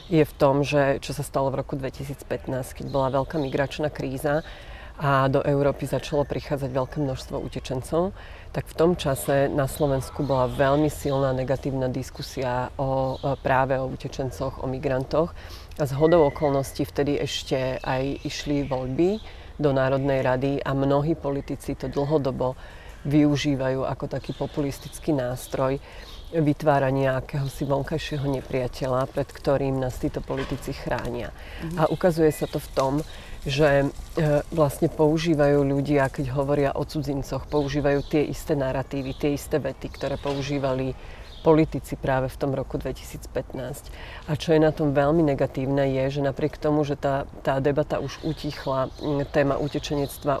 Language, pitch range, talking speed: Slovak, 135-150 Hz, 145 wpm